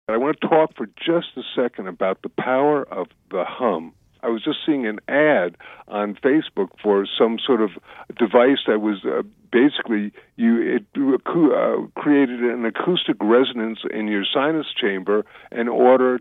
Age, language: 50-69, English